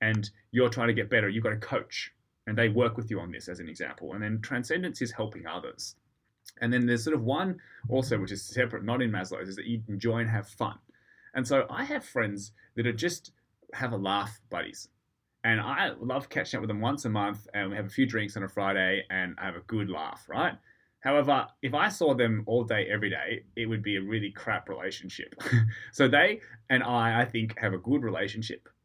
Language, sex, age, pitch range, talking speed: English, male, 20-39, 105-125 Hz, 230 wpm